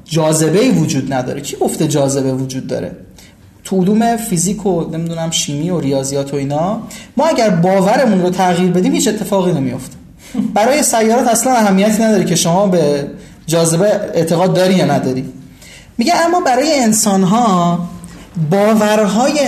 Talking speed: 135 wpm